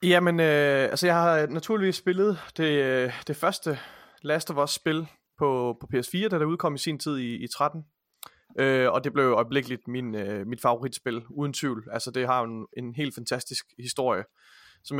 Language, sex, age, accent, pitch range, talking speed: Danish, male, 30-49, native, 130-160 Hz, 190 wpm